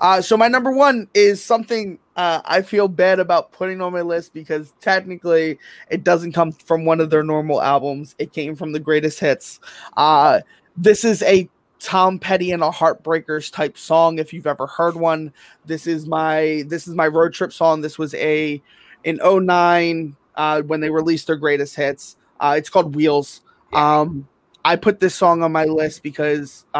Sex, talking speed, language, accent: male, 185 wpm, English, American